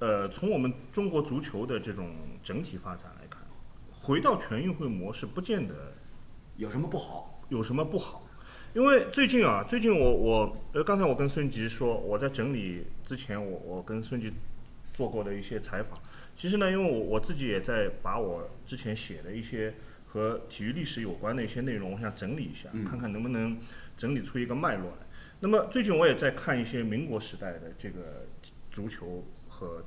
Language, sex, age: Chinese, male, 30-49